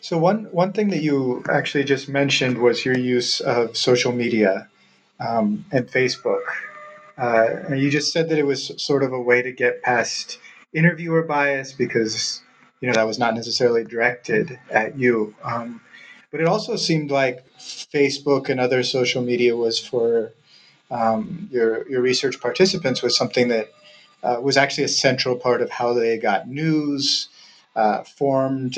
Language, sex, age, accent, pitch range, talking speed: English, male, 30-49, American, 115-160 Hz, 165 wpm